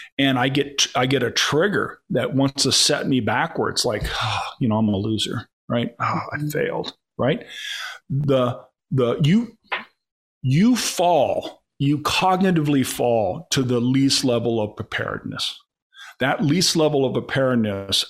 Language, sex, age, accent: English, male, 40-59, American